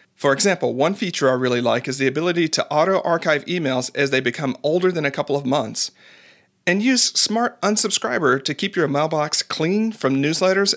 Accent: American